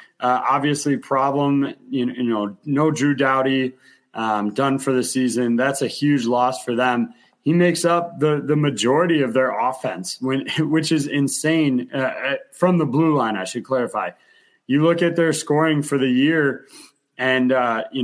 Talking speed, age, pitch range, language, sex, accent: 175 wpm, 30-49, 120-145 Hz, English, male, American